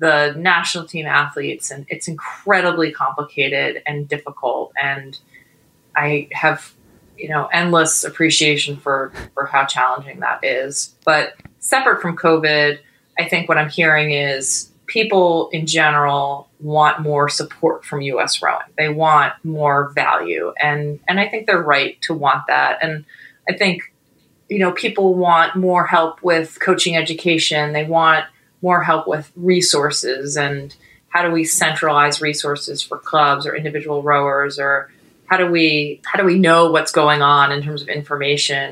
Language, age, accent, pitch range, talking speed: English, 30-49, American, 140-165 Hz, 155 wpm